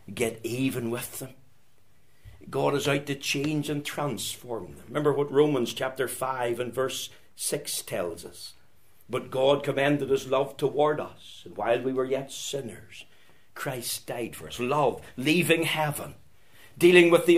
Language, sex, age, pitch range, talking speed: English, male, 60-79, 110-145 Hz, 155 wpm